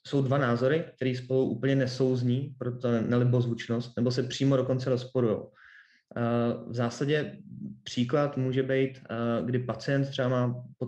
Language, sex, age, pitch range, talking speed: Czech, male, 20-39, 120-135 Hz, 150 wpm